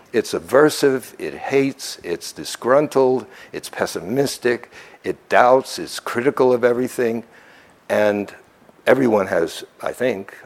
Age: 60-79